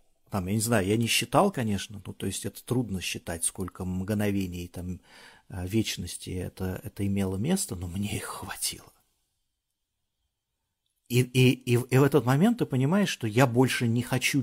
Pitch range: 95-125 Hz